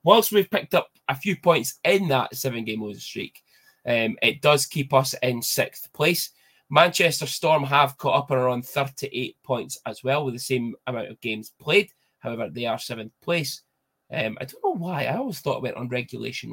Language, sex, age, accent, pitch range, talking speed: English, male, 20-39, British, 125-155 Hz, 200 wpm